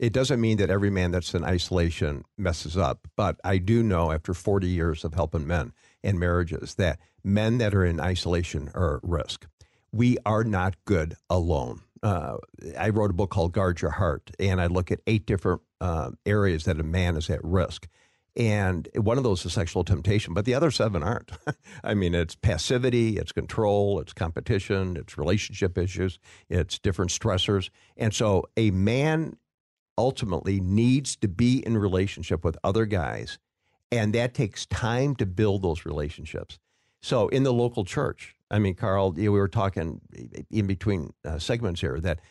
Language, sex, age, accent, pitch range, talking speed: English, male, 50-69, American, 90-110 Hz, 180 wpm